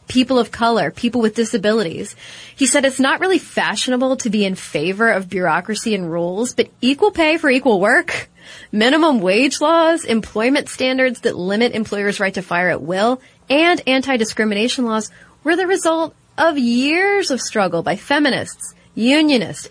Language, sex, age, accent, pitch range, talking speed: English, female, 30-49, American, 200-270 Hz, 160 wpm